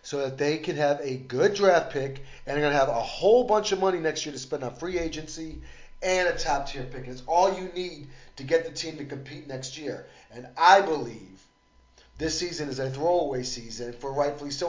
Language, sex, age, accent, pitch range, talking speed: English, male, 40-59, American, 130-165 Hz, 225 wpm